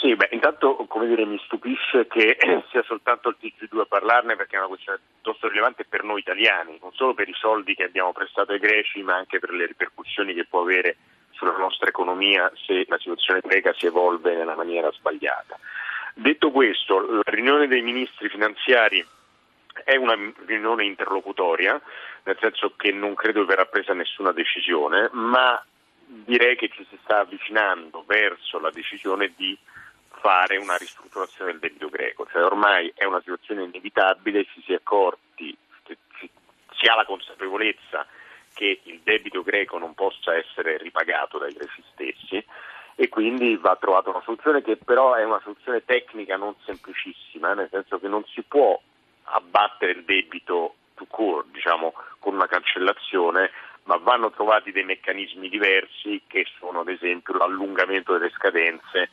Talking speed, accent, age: 160 wpm, native, 40-59